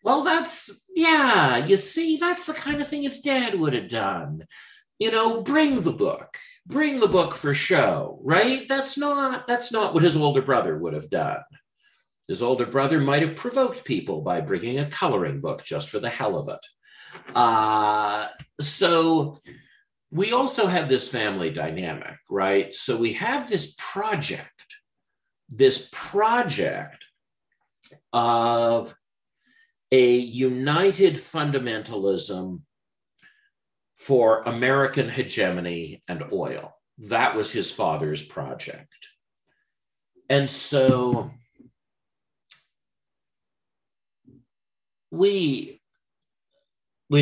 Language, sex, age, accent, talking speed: English, male, 50-69, American, 110 wpm